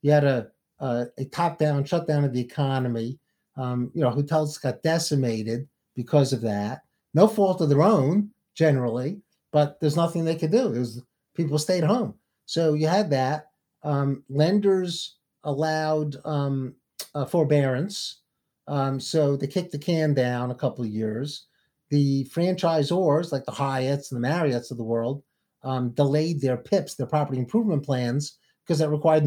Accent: American